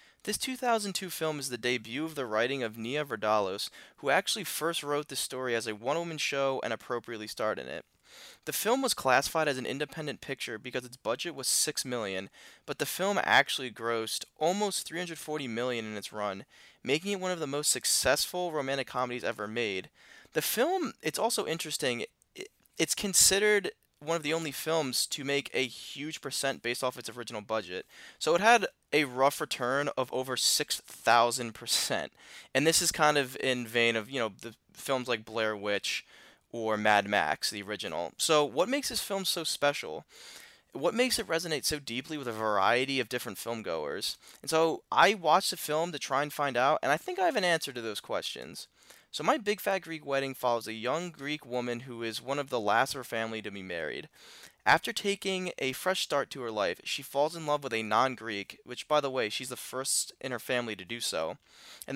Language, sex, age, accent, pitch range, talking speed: English, male, 20-39, American, 120-160 Hz, 200 wpm